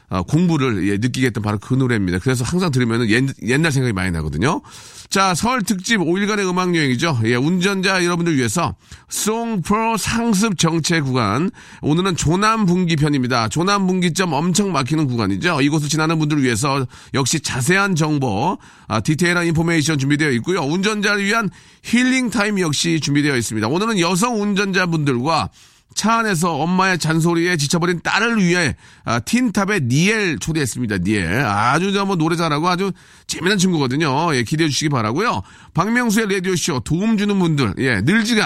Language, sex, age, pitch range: Korean, male, 40-59, 135-195 Hz